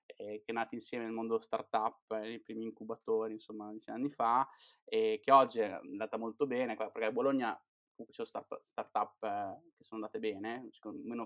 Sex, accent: male, native